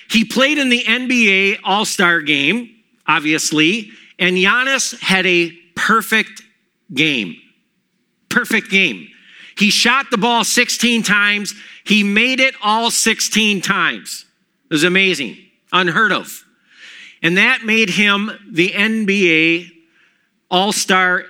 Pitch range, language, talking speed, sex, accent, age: 175-225 Hz, English, 115 wpm, male, American, 50-69